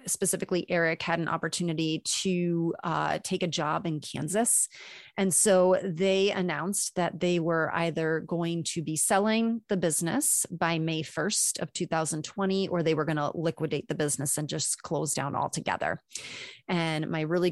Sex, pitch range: female, 160-185 Hz